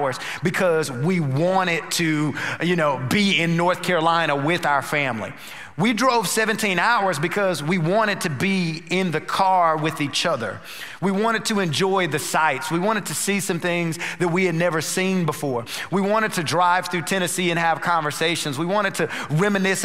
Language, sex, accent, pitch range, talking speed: English, male, American, 160-195 Hz, 180 wpm